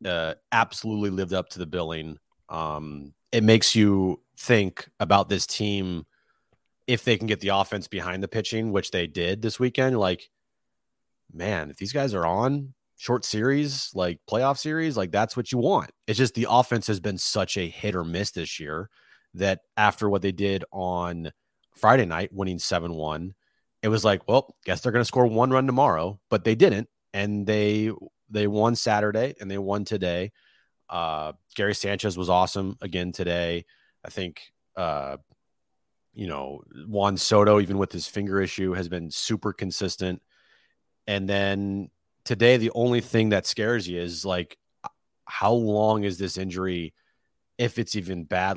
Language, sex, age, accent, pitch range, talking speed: English, male, 30-49, American, 90-110 Hz, 170 wpm